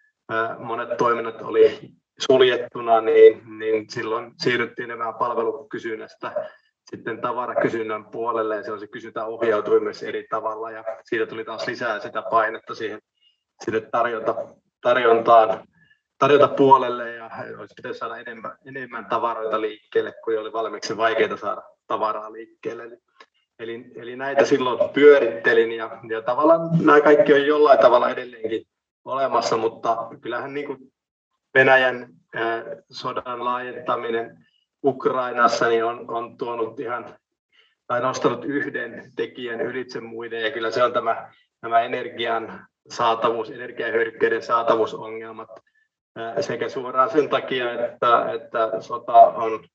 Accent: native